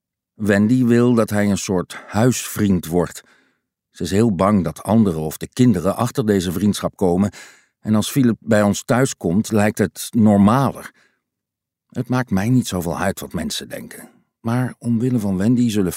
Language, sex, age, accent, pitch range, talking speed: Dutch, male, 50-69, Dutch, 95-120 Hz, 170 wpm